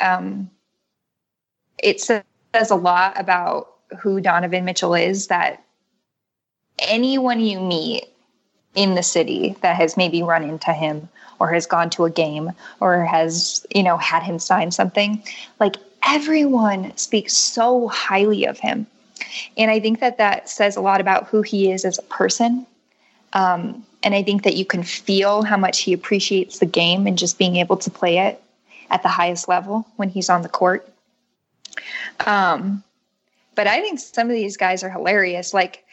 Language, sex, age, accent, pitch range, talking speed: English, female, 10-29, American, 185-240 Hz, 165 wpm